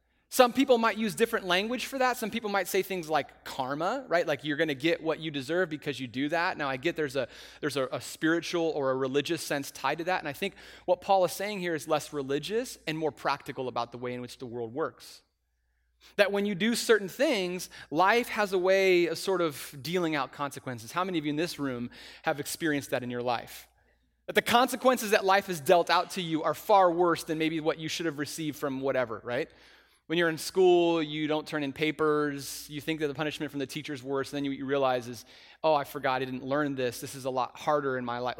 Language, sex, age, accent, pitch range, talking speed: English, male, 30-49, American, 130-180 Hz, 245 wpm